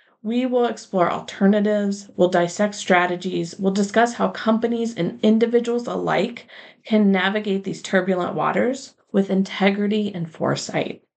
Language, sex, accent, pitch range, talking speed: English, female, American, 185-220 Hz, 125 wpm